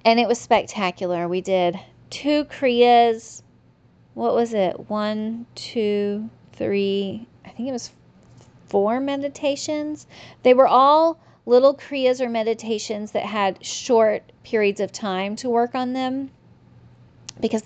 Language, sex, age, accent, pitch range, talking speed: English, female, 30-49, American, 190-235 Hz, 130 wpm